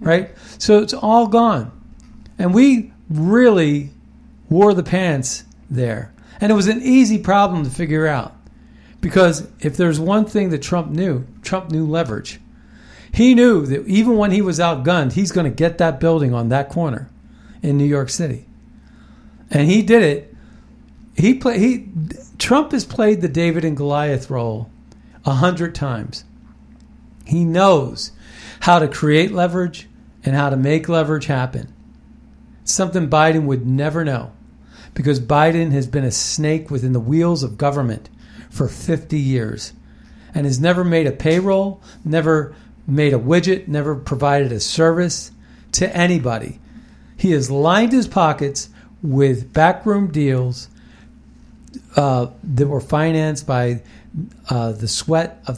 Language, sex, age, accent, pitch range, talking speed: English, male, 50-69, American, 140-185 Hz, 145 wpm